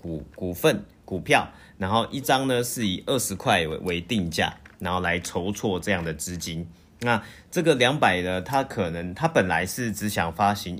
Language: Chinese